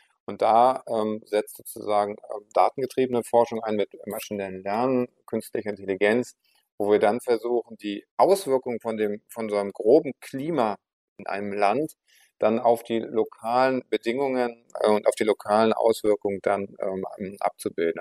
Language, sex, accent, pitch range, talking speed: German, male, German, 100-120 Hz, 145 wpm